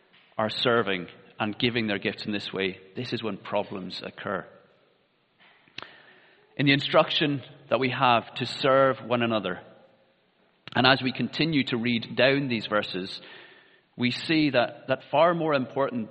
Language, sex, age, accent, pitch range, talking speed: English, male, 30-49, British, 115-140 Hz, 150 wpm